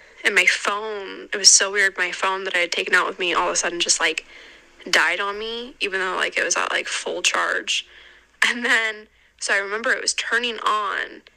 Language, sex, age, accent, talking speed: English, female, 10-29, American, 225 wpm